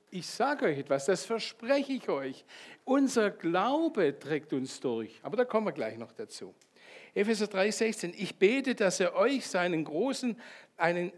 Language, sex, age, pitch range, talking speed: German, male, 60-79, 165-245 Hz, 160 wpm